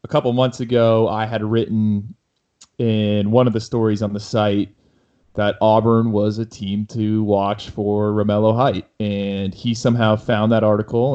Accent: American